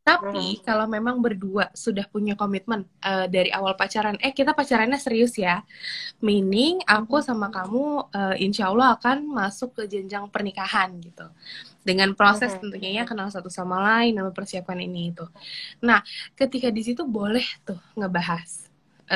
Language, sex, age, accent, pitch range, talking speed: Indonesian, female, 10-29, native, 195-255 Hz, 150 wpm